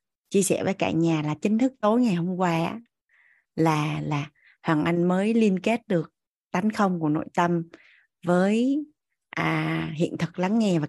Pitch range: 165-230 Hz